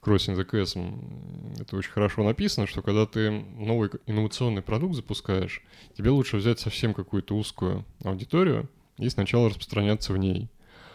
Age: 20-39